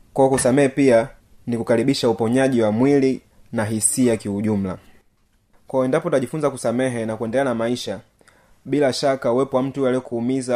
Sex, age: male, 30-49